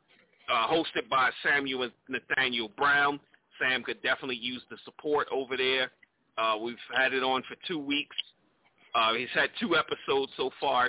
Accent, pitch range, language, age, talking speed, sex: American, 120-155 Hz, English, 40-59, 165 wpm, male